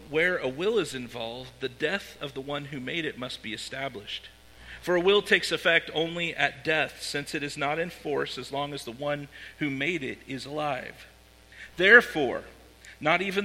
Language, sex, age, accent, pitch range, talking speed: English, male, 50-69, American, 135-175 Hz, 190 wpm